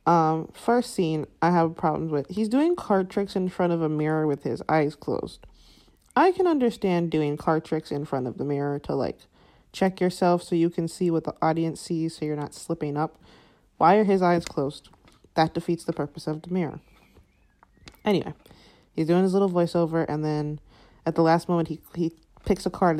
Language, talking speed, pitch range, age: English, 200 wpm, 155-180 Hz, 30-49